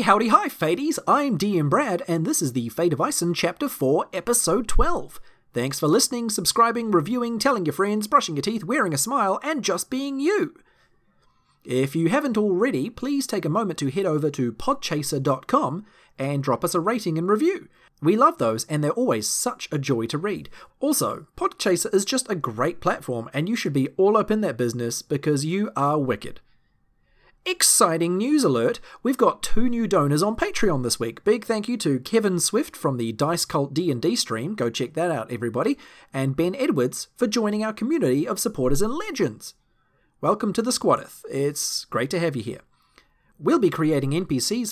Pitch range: 140-230 Hz